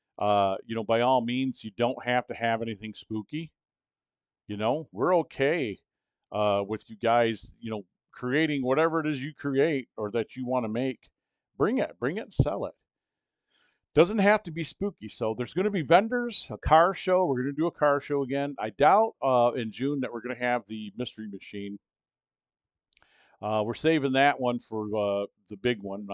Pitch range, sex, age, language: 105-135 Hz, male, 50-69, English